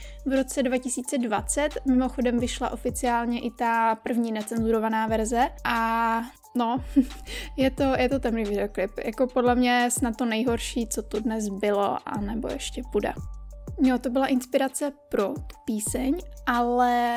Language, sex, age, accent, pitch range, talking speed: Czech, female, 20-39, native, 230-265 Hz, 135 wpm